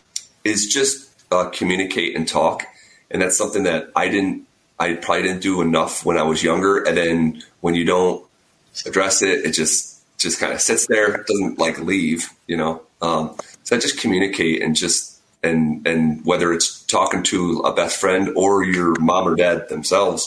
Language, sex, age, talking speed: English, male, 30-49, 185 wpm